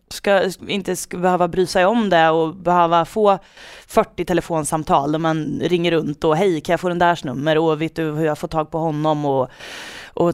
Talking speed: 210 wpm